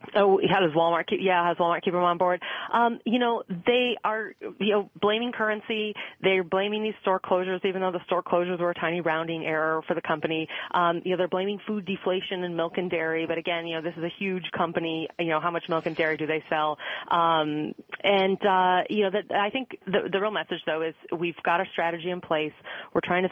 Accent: American